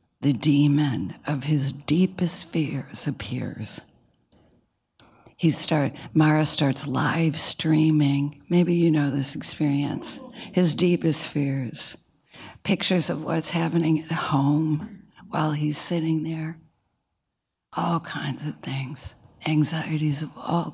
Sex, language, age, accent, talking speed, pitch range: female, English, 60-79, American, 110 wpm, 140-165 Hz